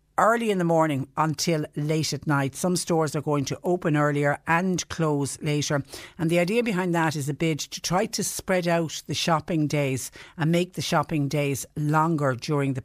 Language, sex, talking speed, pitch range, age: English, female, 195 wpm, 145-170 Hz, 60-79